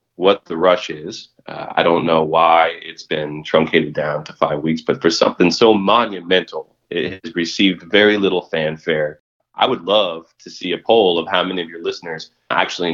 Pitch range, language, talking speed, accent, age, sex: 80-95 Hz, English, 190 wpm, American, 30-49, male